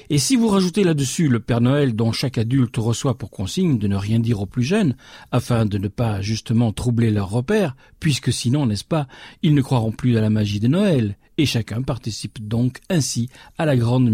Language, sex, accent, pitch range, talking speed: French, male, French, 115-145 Hz, 210 wpm